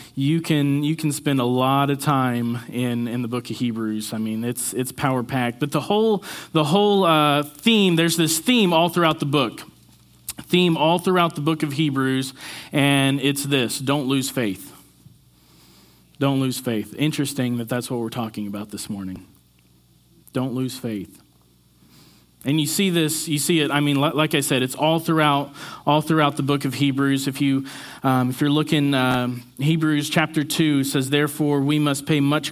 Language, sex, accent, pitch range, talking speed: English, male, American, 130-160 Hz, 185 wpm